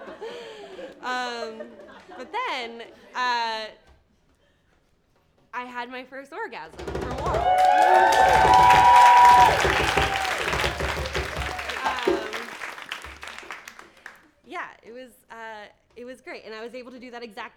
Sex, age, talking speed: female, 20-39, 85 wpm